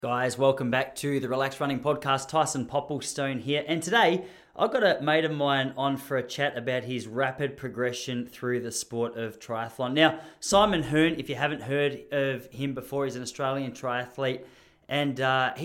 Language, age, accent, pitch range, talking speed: English, 20-39, Australian, 130-155 Hz, 185 wpm